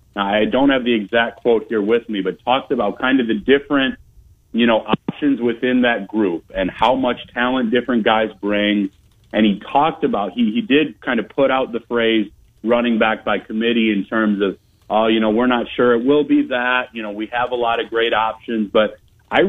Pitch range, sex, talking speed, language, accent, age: 110-125 Hz, male, 215 wpm, English, American, 40-59